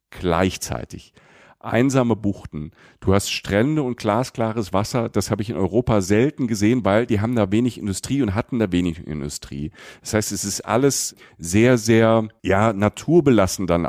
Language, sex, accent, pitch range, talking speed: German, male, German, 100-125 Hz, 160 wpm